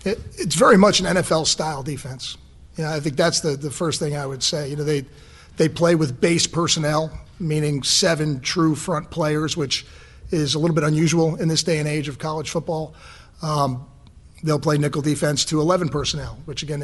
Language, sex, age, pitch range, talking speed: English, male, 40-59, 145-175 Hz, 195 wpm